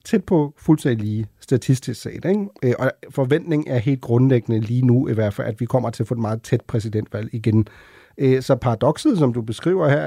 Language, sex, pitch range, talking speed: Danish, male, 120-155 Hz, 205 wpm